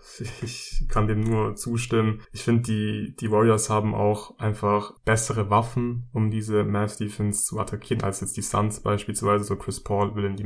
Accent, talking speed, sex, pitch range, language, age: German, 185 wpm, male, 100-110 Hz, German, 20-39